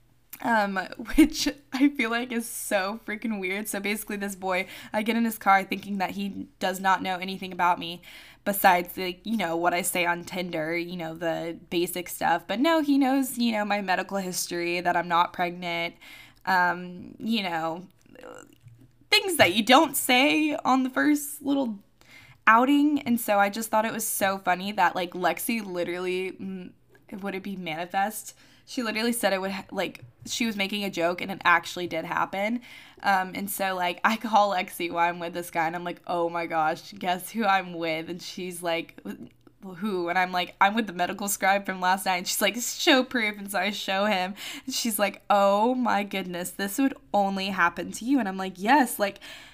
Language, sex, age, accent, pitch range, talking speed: English, female, 10-29, American, 175-225 Hz, 200 wpm